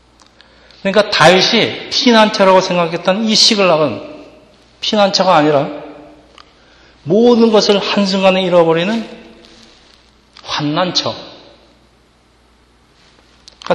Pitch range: 140-190 Hz